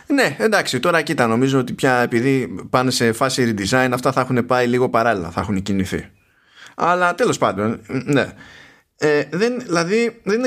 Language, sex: Greek, male